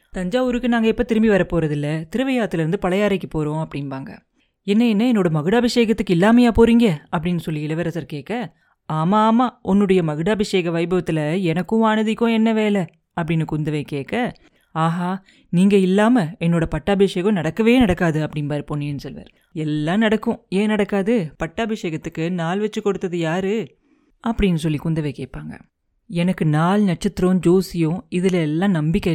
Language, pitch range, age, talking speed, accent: Tamil, 160-215 Hz, 30-49, 130 wpm, native